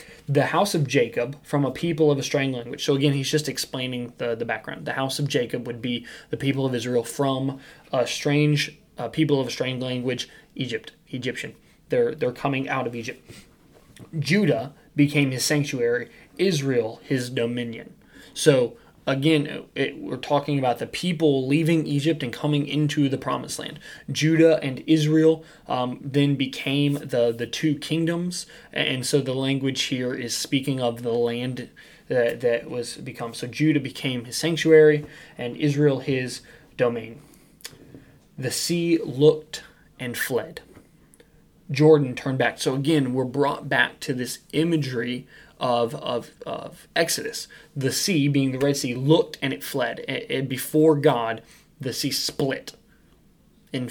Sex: male